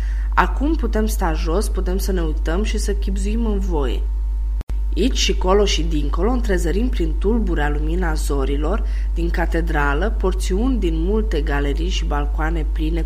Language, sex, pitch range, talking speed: Romanian, female, 145-190 Hz, 145 wpm